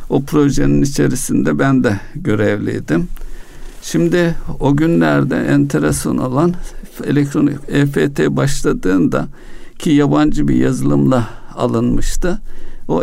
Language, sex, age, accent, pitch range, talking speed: Turkish, male, 60-79, native, 100-145 Hz, 90 wpm